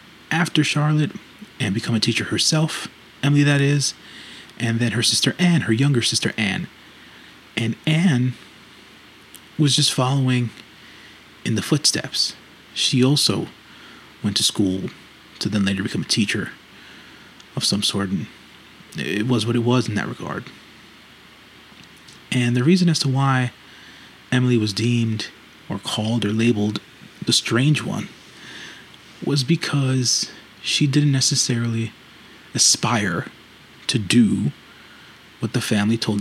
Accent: American